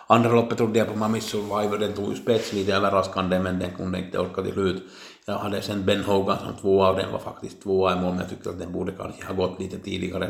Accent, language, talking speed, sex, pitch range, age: Finnish, Swedish, 260 wpm, male, 95-105 Hz, 60-79